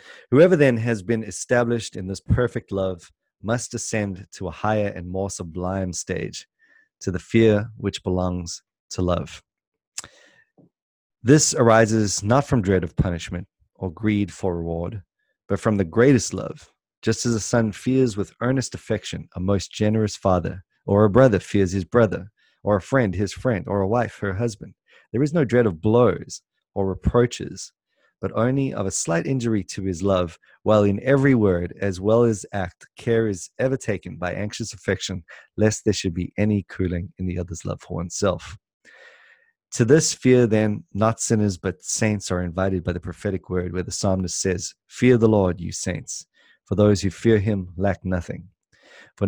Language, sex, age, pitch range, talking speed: English, male, 30-49, 90-115 Hz, 175 wpm